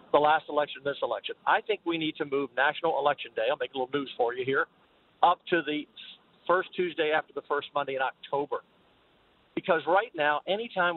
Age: 50-69